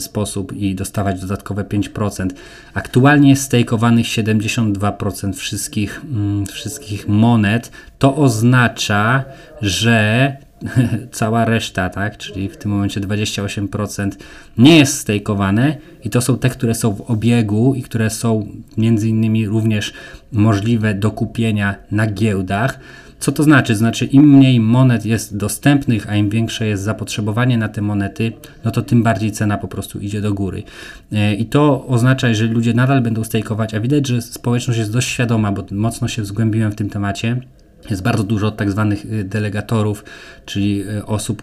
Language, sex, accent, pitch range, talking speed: Polish, male, native, 100-115 Hz, 150 wpm